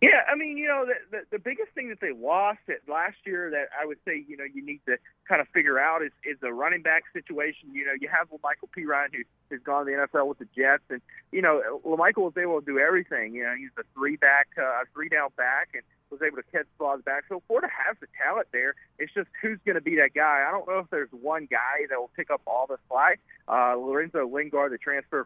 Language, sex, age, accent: English, male, 40-59, American